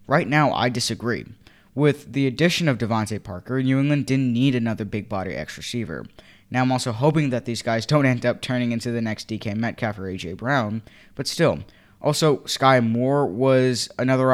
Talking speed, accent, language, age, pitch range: 190 wpm, American, English, 10-29, 110-135 Hz